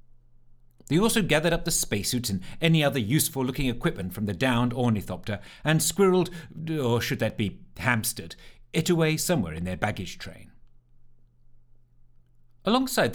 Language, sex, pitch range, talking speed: English, male, 100-150 Hz, 135 wpm